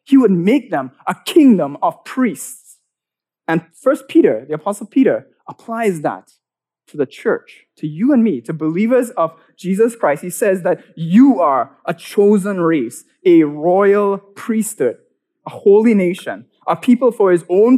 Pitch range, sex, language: 160-220 Hz, male, English